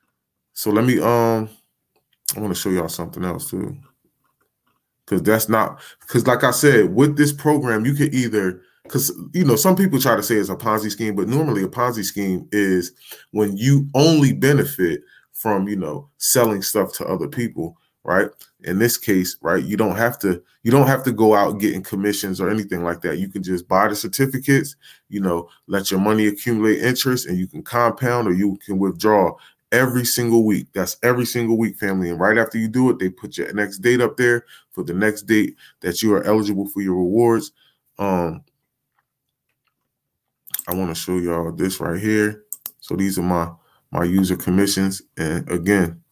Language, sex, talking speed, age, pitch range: English, male, 195 wpm, 20-39, 95-120 Hz